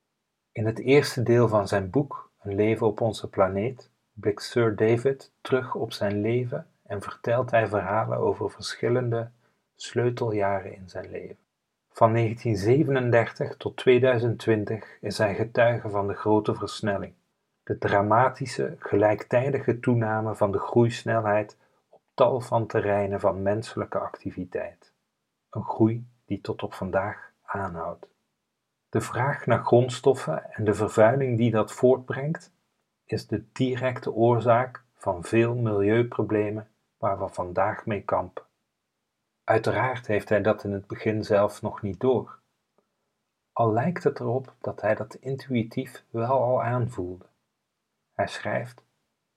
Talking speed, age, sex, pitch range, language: 130 wpm, 40-59, male, 105-125 Hz, Dutch